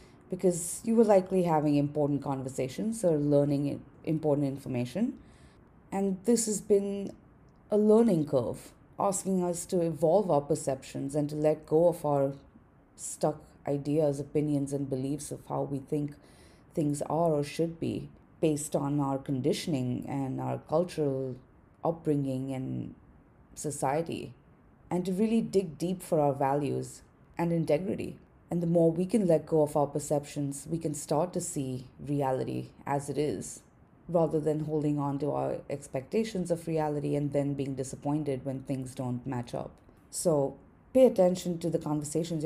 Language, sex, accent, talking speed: English, female, Indian, 150 wpm